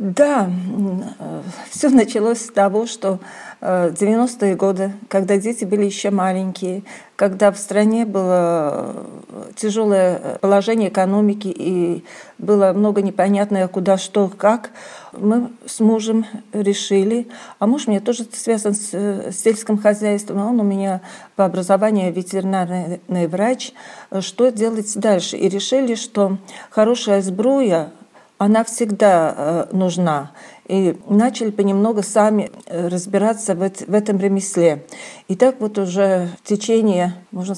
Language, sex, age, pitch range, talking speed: Russian, female, 40-59, 190-225 Hz, 115 wpm